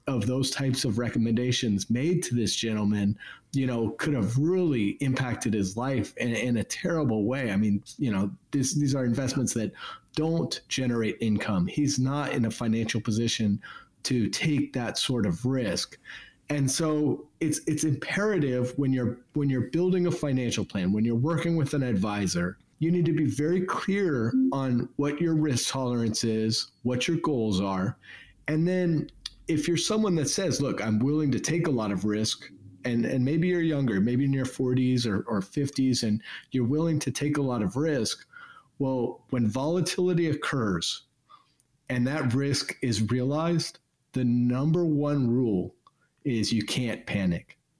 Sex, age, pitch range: male, 30-49, 115-150 Hz